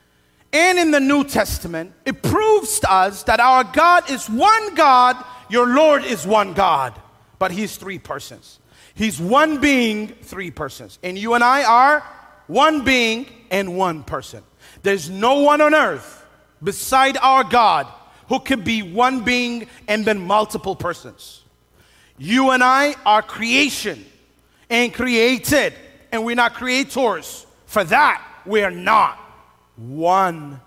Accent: American